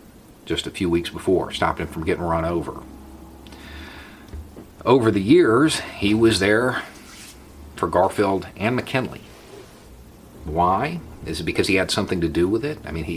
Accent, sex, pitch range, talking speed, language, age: American, male, 80-105 Hz, 160 wpm, English, 40-59